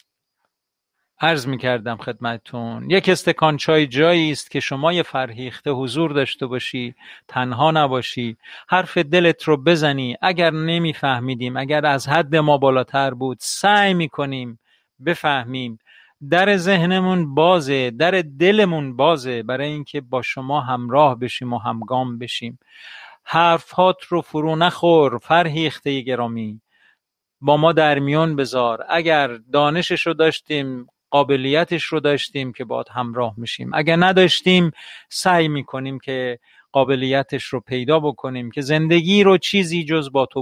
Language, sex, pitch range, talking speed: Persian, male, 130-165 Hz, 125 wpm